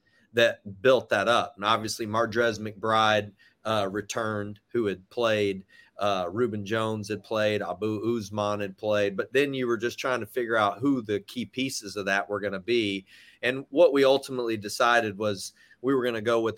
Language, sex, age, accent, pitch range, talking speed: English, male, 30-49, American, 100-120 Hz, 190 wpm